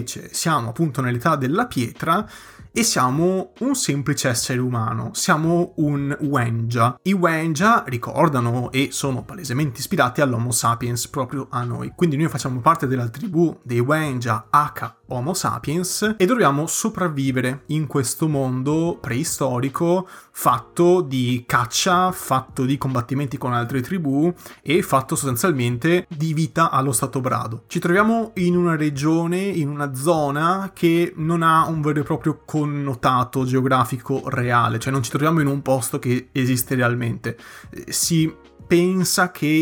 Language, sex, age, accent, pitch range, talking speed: Italian, male, 30-49, native, 130-160 Hz, 140 wpm